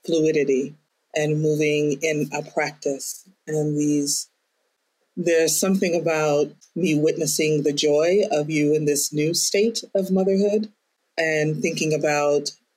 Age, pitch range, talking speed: 40-59, 140-155 Hz, 120 wpm